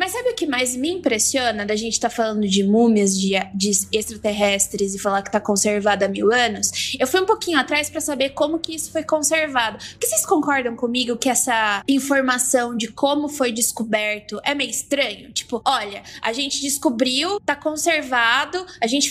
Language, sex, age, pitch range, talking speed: Portuguese, female, 20-39, 225-320 Hz, 190 wpm